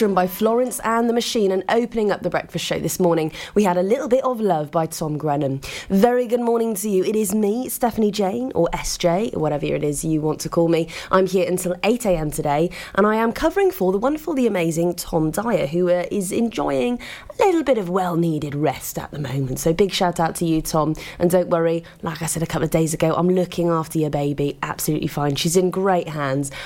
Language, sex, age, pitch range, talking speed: English, female, 20-39, 165-215 Hz, 230 wpm